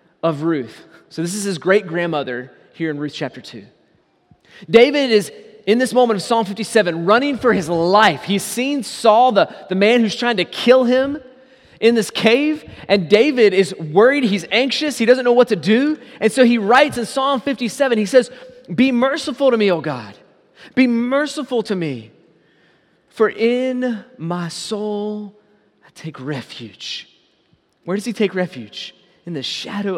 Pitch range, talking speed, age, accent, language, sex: 155-230 Hz, 170 wpm, 30-49, American, English, male